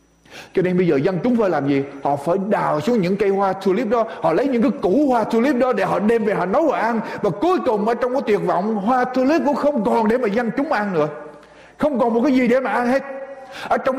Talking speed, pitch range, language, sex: 275 wpm, 180-265 Hz, Vietnamese, male